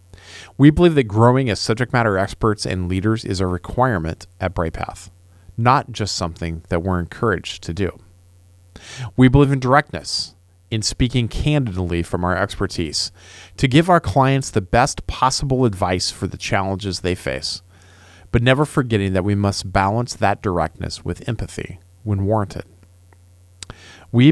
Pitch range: 90-115 Hz